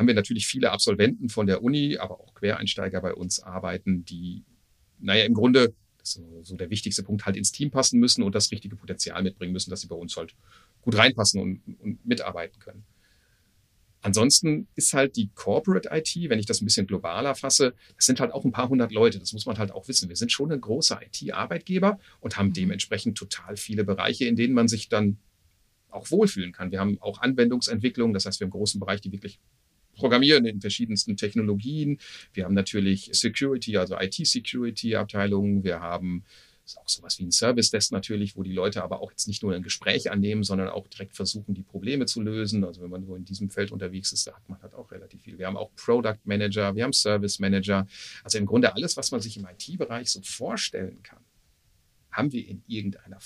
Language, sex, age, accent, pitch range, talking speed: German, male, 40-59, German, 95-115 Hz, 200 wpm